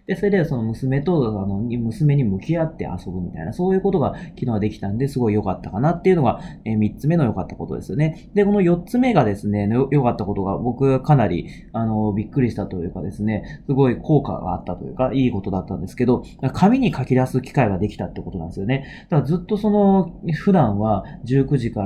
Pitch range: 105-160 Hz